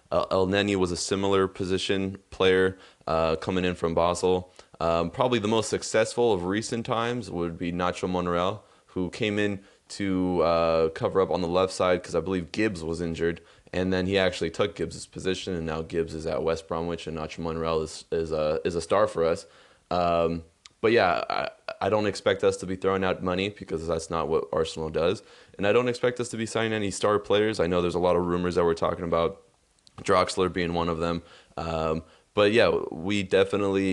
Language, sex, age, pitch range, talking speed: English, male, 20-39, 85-95 Hz, 210 wpm